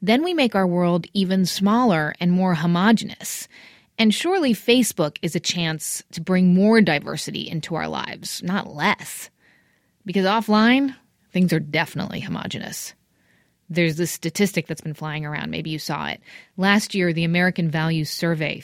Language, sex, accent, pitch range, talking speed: English, female, American, 160-210 Hz, 155 wpm